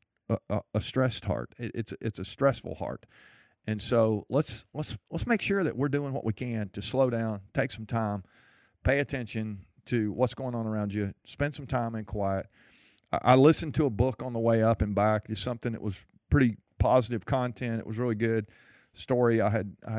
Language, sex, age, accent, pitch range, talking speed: English, male, 40-59, American, 105-125 Hz, 205 wpm